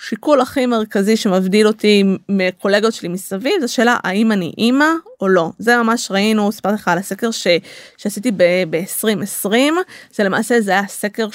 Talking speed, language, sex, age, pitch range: 160 wpm, Hebrew, female, 20-39, 200-250 Hz